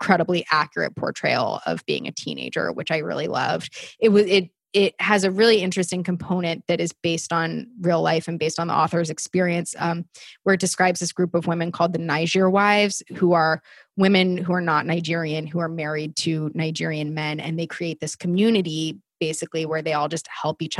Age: 20-39